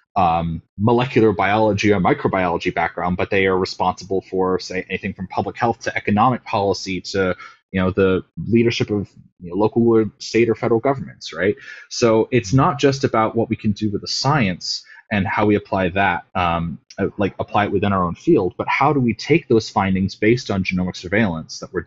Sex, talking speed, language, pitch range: male, 190 wpm, English, 90-110 Hz